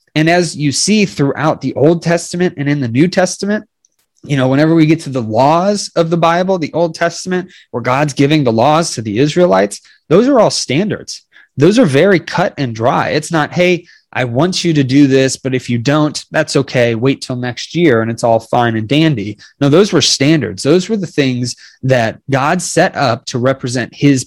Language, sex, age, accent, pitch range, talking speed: English, male, 20-39, American, 125-160 Hz, 210 wpm